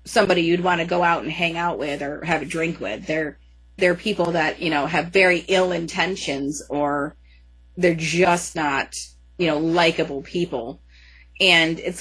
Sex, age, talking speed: female, 30-49, 175 wpm